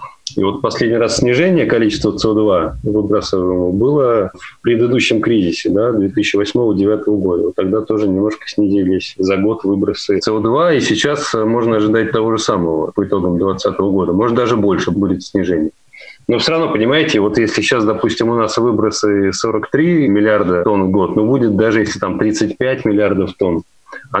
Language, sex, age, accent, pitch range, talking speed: Russian, male, 30-49, native, 100-110 Hz, 155 wpm